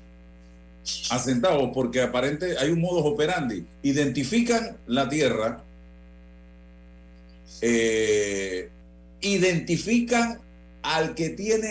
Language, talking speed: Spanish, 75 wpm